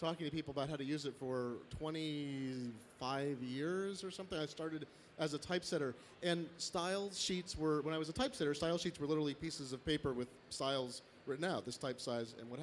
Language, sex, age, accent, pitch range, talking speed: English, male, 40-59, American, 140-180 Hz, 205 wpm